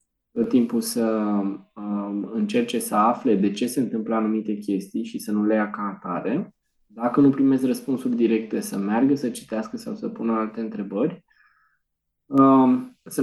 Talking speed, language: 160 wpm, Romanian